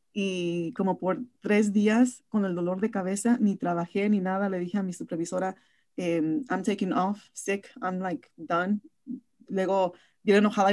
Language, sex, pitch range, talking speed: English, female, 185-230 Hz, 160 wpm